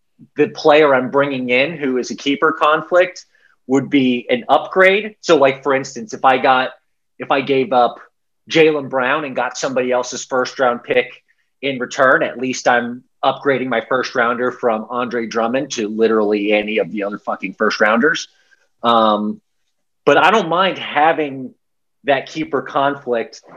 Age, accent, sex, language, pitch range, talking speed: 30-49, American, male, English, 125-150 Hz, 165 wpm